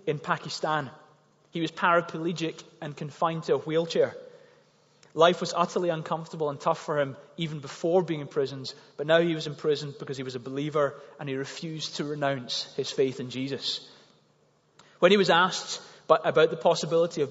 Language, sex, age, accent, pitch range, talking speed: English, male, 30-49, British, 140-175 Hz, 175 wpm